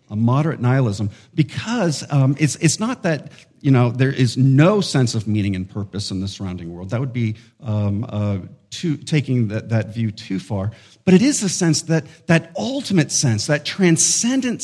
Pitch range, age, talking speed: 110-150 Hz, 50-69, 190 wpm